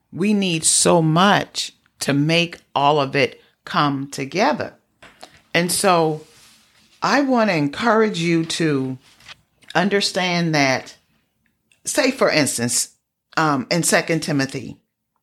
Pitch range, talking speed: 140-180 Hz, 110 wpm